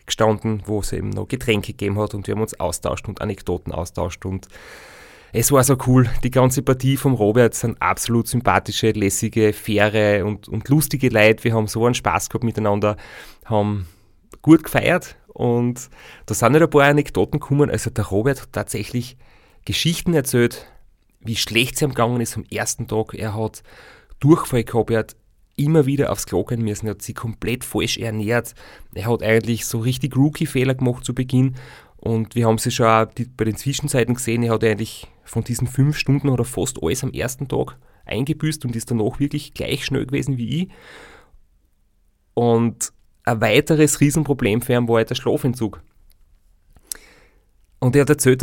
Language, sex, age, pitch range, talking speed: German, male, 30-49, 110-135 Hz, 175 wpm